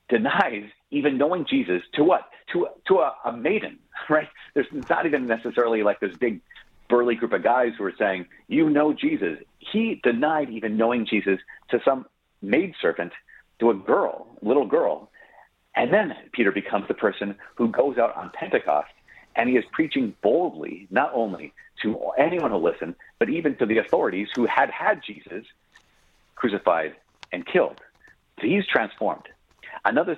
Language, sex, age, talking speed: English, male, 40-59, 160 wpm